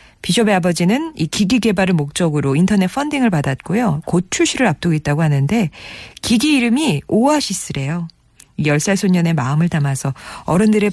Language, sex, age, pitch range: Korean, female, 40-59, 145-210 Hz